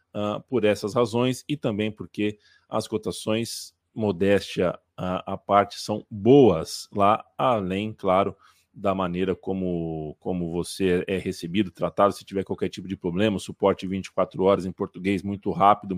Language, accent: Portuguese, Brazilian